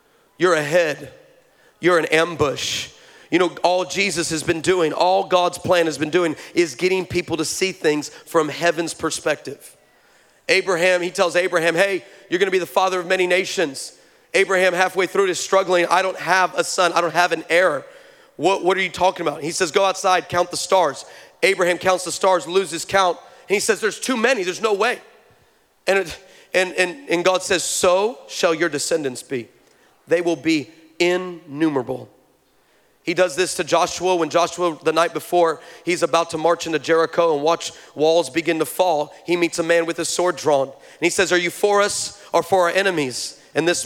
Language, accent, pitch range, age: English, American, 165-185 Hz, 40-59